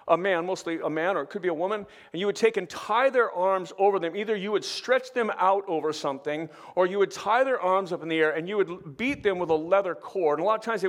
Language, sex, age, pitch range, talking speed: English, male, 40-59, 170-220 Hz, 300 wpm